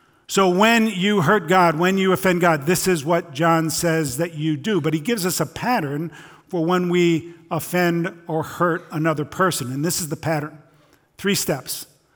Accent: American